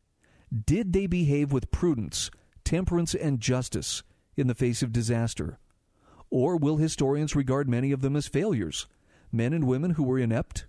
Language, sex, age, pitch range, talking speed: English, male, 50-69, 120-160 Hz, 155 wpm